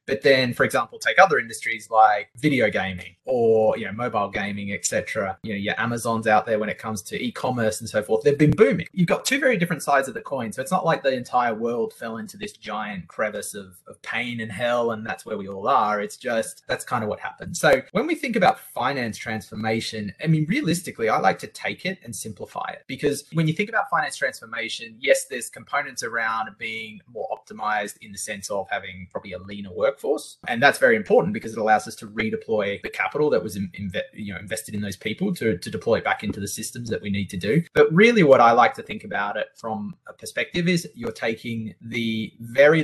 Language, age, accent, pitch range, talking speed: English, 20-39, Australian, 105-155 Hz, 235 wpm